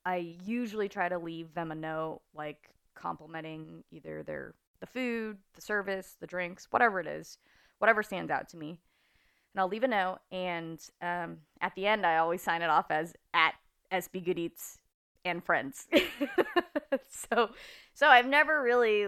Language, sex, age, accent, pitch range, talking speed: English, female, 20-39, American, 165-205 Hz, 165 wpm